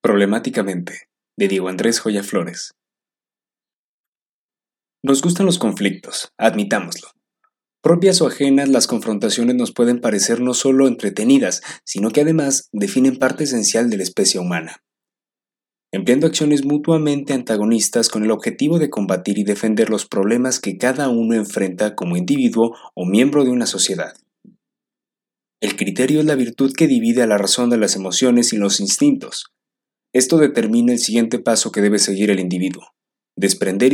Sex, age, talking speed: male, 30-49, 145 wpm